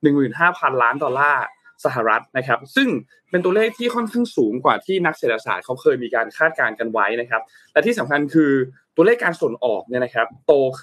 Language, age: Thai, 20-39